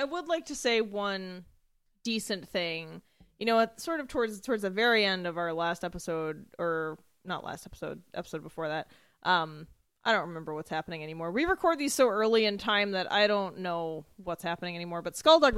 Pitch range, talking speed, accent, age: 180-250 Hz, 195 wpm, American, 20-39